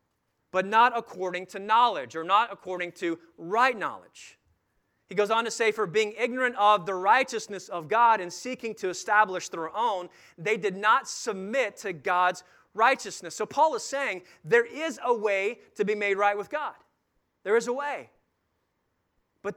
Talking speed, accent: 170 wpm, American